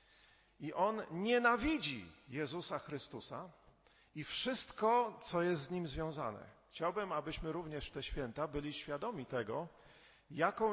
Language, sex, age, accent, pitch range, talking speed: Polish, male, 40-59, native, 140-175 Hz, 115 wpm